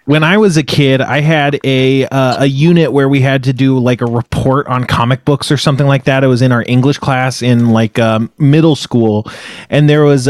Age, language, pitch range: 20-39, English, 125-160 Hz